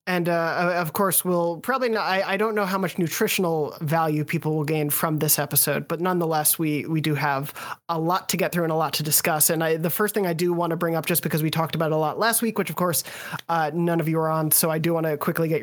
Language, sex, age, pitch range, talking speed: English, male, 20-39, 150-175 Hz, 280 wpm